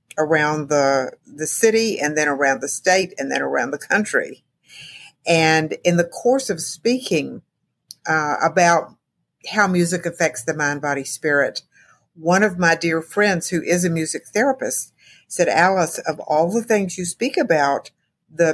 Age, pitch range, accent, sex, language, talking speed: 50-69, 150-180 Hz, American, female, English, 160 wpm